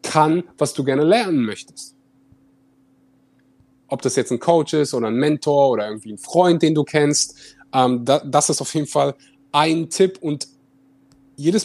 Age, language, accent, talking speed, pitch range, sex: 30-49, German, German, 165 wpm, 130-155 Hz, male